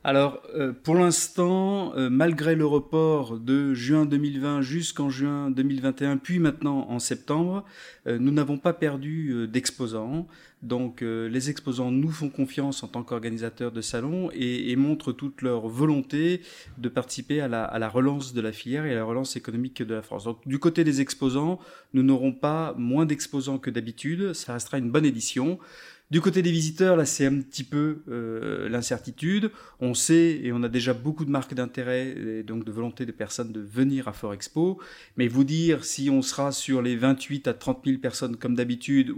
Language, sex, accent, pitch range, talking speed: French, male, French, 120-150 Hz, 180 wpm